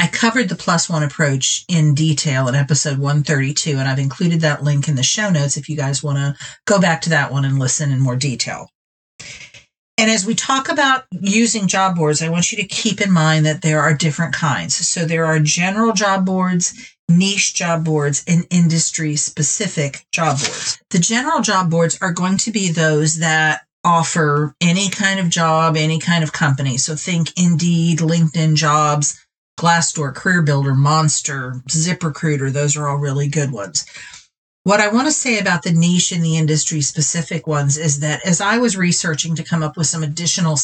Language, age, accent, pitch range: English, 40-59, American, 150-180 Hz